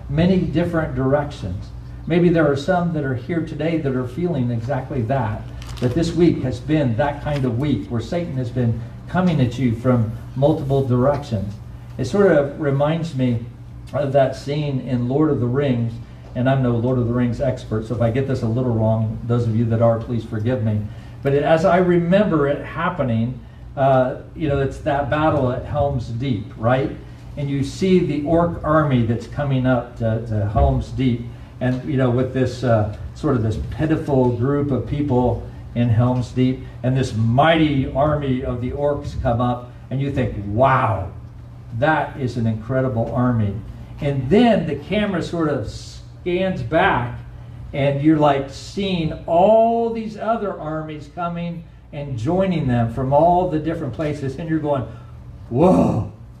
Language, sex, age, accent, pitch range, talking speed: English, male, 50-69, American, 120-150 Hz, 175 wpm